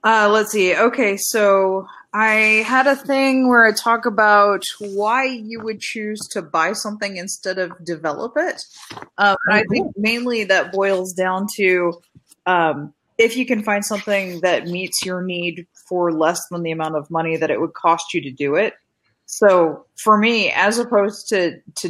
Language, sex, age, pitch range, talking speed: English, female, 30-49, 160-200 Hz, 175 wpm